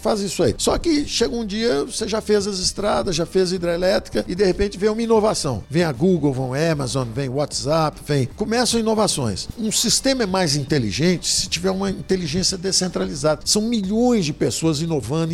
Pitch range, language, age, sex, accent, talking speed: 150-200 Hz, Portuguese, 60-79, male, Brazilian, 190 wpm